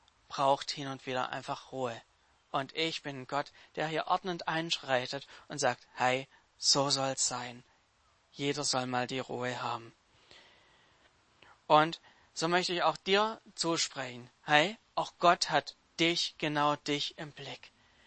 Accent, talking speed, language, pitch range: German, 140 wpm, German, 140-180 Hz